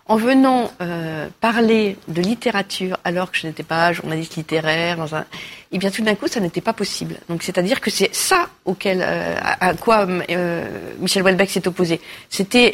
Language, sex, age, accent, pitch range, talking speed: French, female, 40-59, French, 175-225 Hz, 185 wpm